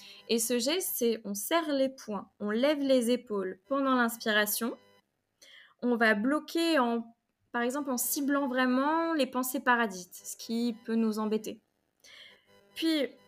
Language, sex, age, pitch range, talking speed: French, female, 20-39, 215-260 Hz, 145 wpm